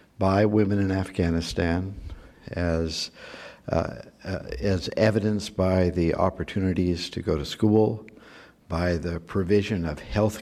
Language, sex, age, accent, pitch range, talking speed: English, male, 60-79, American, 85-100 Hz, 115 wpm